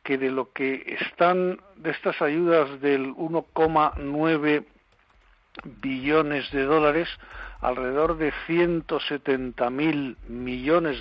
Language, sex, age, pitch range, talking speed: Spanish, male, 60-79, 135-155 Hz, 95 wpm